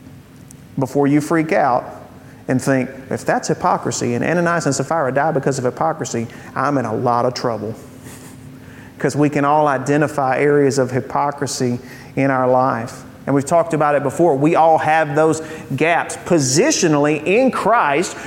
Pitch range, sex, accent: 140-200 Hz, male, American